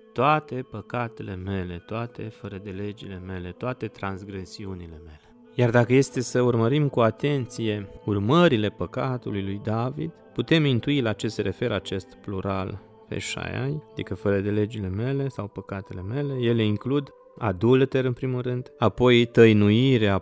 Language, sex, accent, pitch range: Romanian, male, native, 105-130 Hz